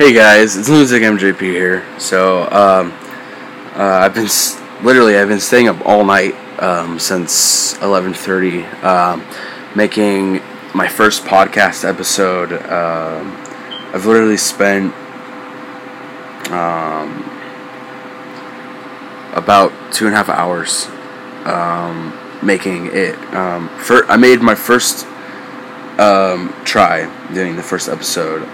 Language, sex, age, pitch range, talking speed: English, male, 20-39, 95-110 Hz, 110 wpm